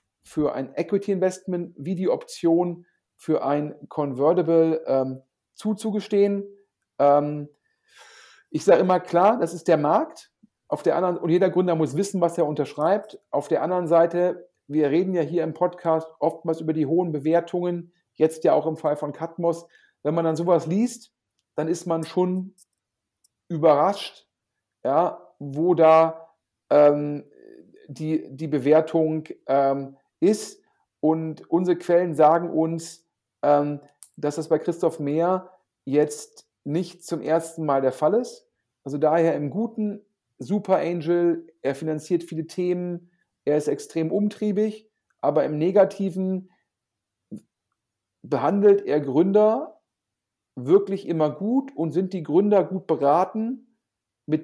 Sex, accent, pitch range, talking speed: male, German, 150-185 Hz, 135 wpm